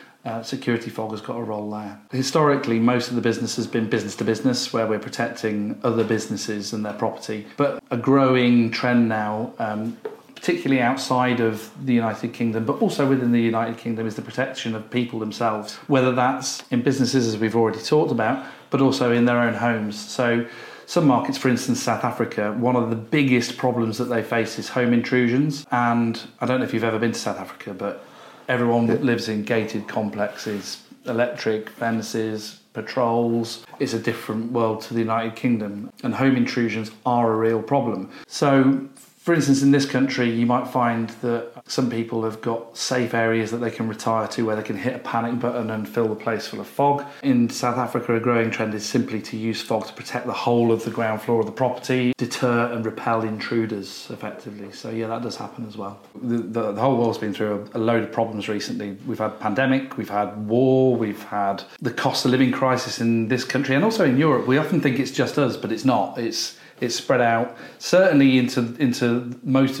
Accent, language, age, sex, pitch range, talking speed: British, English, 40-59, male, 110-125 Hz, 205 wpm